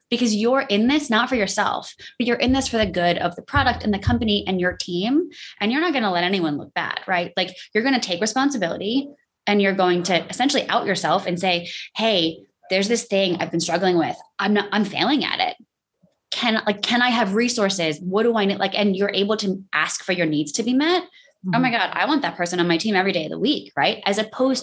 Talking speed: 250 wpm